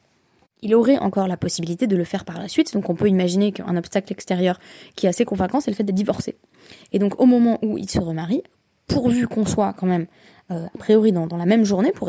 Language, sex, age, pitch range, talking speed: French, female, 20-39, 180-225 Hz, 245 wpm